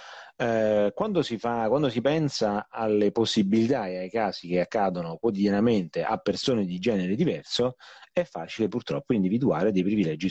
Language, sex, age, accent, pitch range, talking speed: Italian, male, 30-49, native, 95-120 Hz, 150 wpm